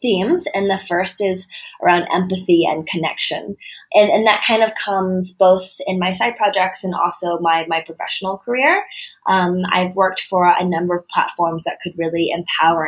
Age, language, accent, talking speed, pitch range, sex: 20-39, English, American, 175 wpm, 165-195 Hz, female